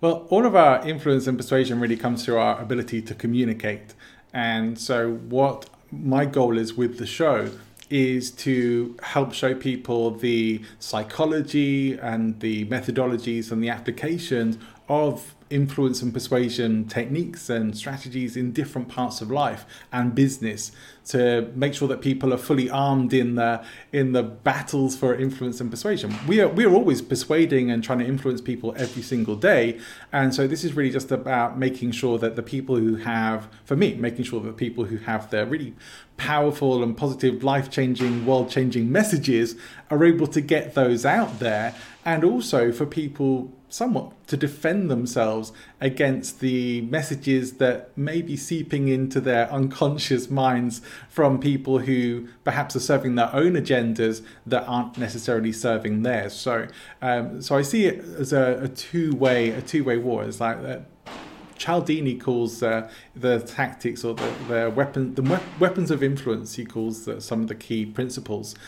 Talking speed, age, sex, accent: 165 wpm, 30-49, male, British